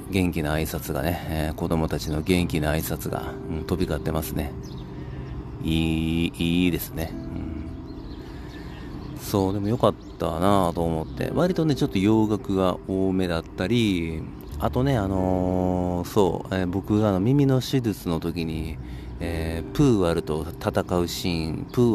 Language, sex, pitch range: Japanese, male, 80-120 Hz